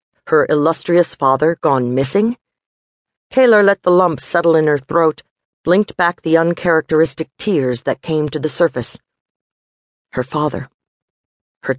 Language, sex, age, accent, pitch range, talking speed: English, female, 50-69, American, 130-170 Hz, 130 wpm